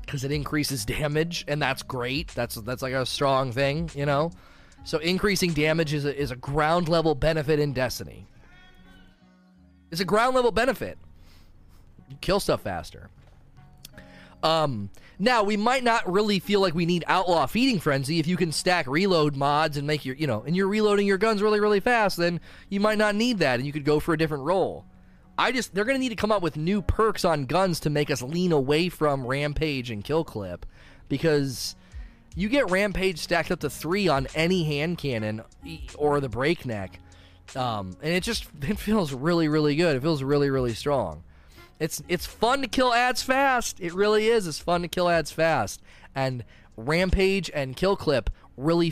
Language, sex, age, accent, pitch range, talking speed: English, male, 30-49, American, 130-180 Hz, 190 wpm